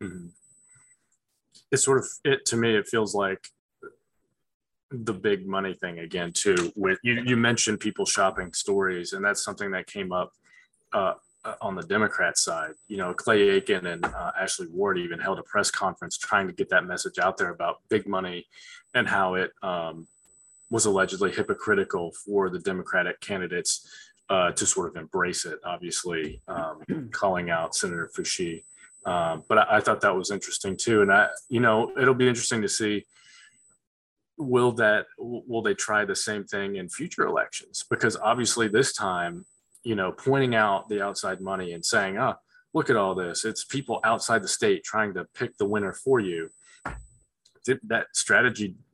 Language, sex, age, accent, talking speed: English, male, 20-39, American, 175 wpm